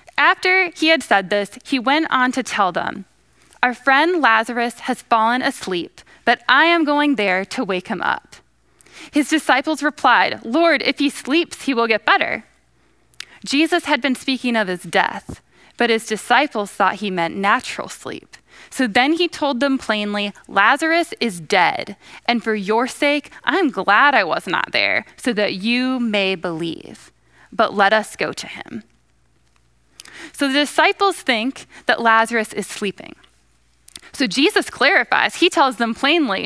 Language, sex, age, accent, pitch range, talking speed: English, female, 10-29, American, 210-290 Hz, 160 wpm